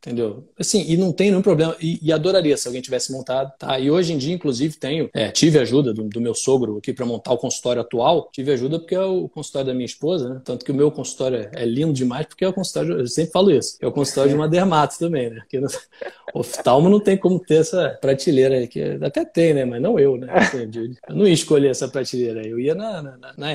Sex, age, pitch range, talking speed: male, 20-39, 130-180 Hz, 250 wpm